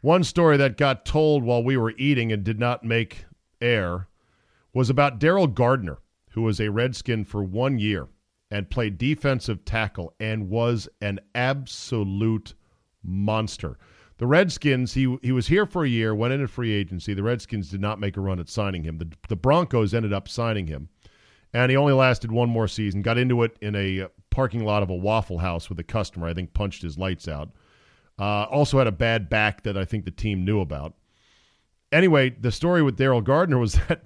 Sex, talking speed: male, 195 wpm